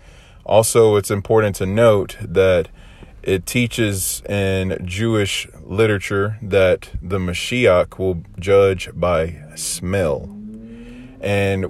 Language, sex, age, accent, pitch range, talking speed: English, male, 30-49, American, 95-110 Hz, 95 wpm